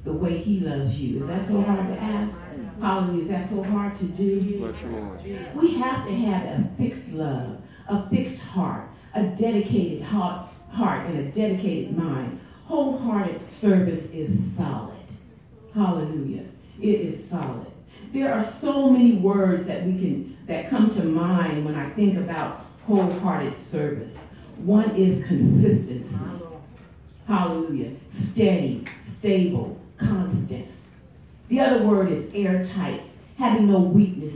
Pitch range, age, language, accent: 165-210 Hz, 50-69, English, American